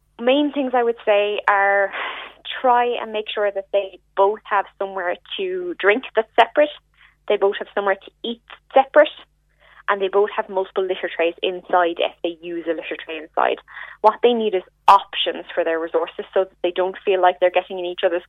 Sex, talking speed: female, 195 wpm